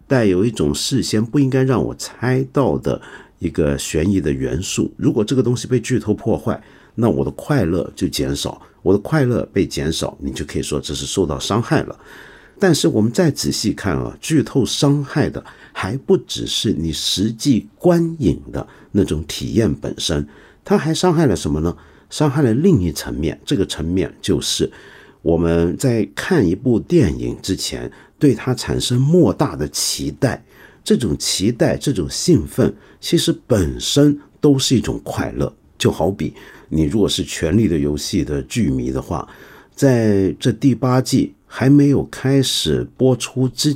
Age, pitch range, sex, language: 50-69, 85-145 Hz, male, Chinese